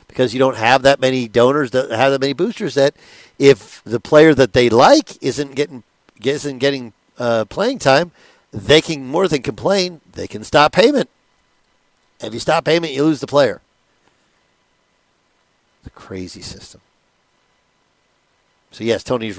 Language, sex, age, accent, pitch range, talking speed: English, male, 50-69, American, 110-140 Hz, 150 wpm